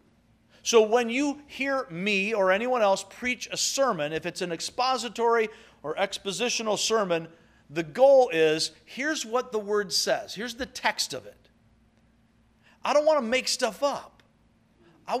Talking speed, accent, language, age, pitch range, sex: 155 wpm, American, English, 50-69, 155-240 Hz, male